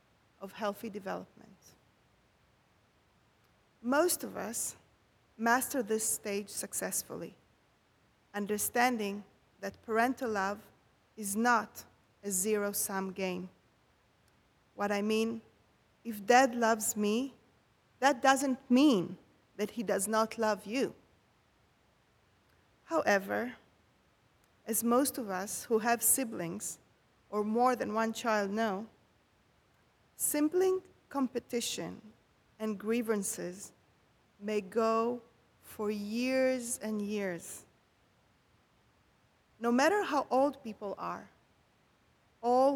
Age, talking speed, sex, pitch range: 30-49, 95 wpm, female, 205-250 Hz